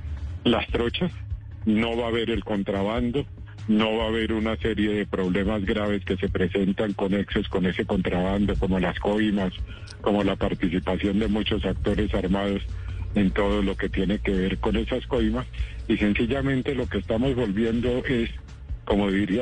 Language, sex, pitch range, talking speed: Spanish, male, 95-115 Hz, 165 wpm